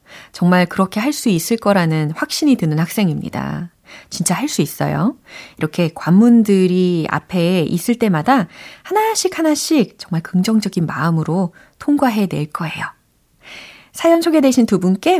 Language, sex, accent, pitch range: Korean, female, native, 175-285 Hz